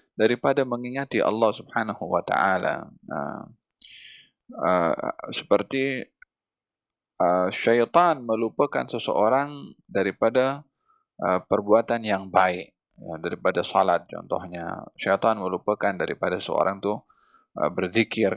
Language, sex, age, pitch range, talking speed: Malay, male, 20-39, 95-130 Hz, 90 wpm